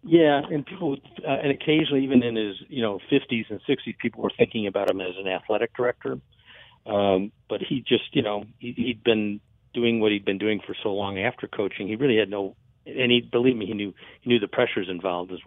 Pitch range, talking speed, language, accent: 95-120 Hz, 225 wpm, English, American